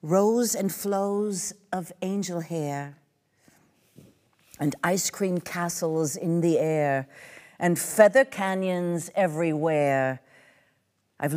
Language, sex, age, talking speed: German, female, 50-69, 95 wpm